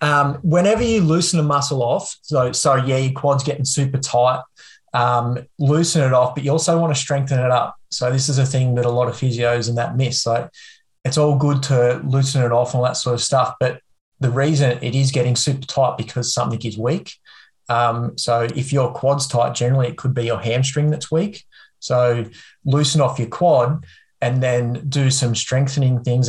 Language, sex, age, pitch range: English, male, 20-39, 120-140 Hz